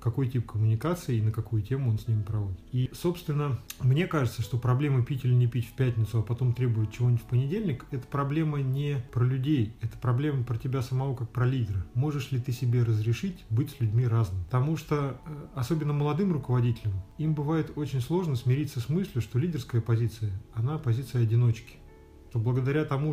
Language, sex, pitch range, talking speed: Russian, male, 115-145 Hz, 185 wpm